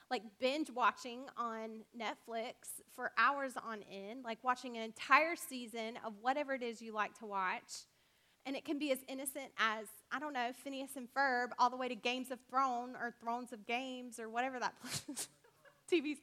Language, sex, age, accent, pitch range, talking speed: English, female, 20-39, American, 225-280 Hz, 180 wpm